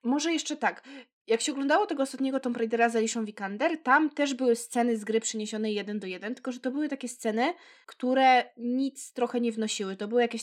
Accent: native